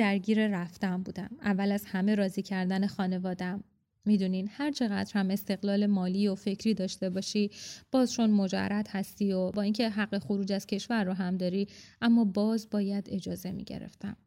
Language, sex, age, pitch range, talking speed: Persian, female, 20-39, 190-210 Hz, 160 wpm